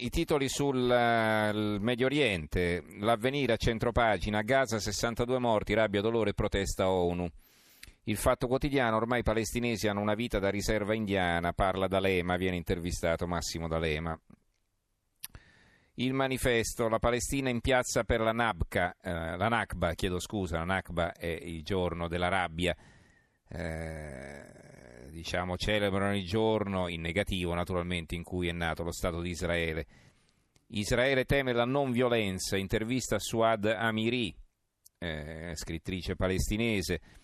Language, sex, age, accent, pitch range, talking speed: Italian, male, 40-59, native, 90-115 Hz, 130 wpm